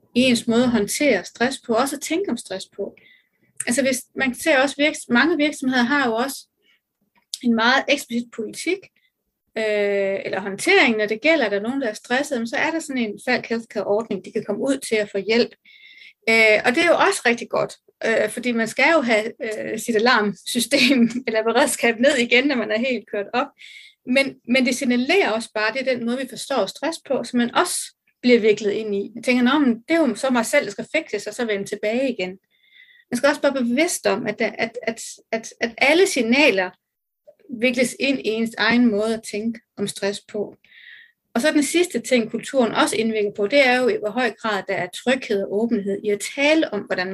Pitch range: 215-275 Hz